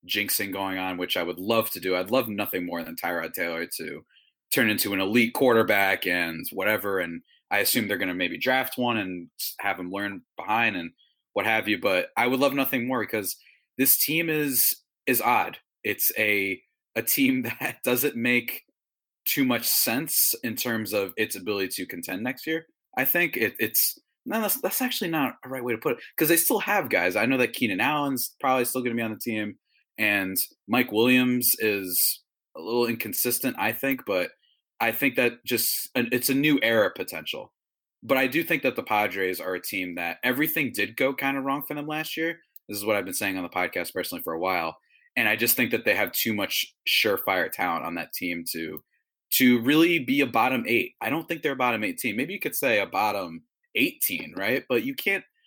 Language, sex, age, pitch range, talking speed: English, male, 20-39, 100-150 Hz, 215 wpm